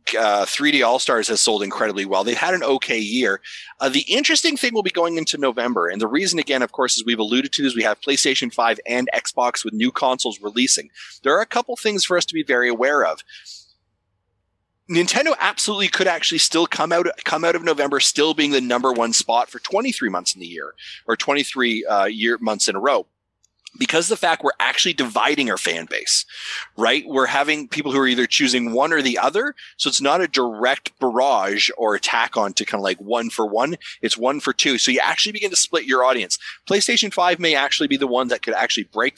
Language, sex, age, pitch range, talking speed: English, male, 30-49, 120-175 Hz, 225 wpm